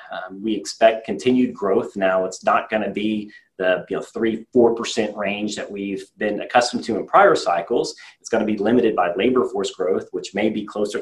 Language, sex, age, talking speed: English, male, 30-49, 210 wpm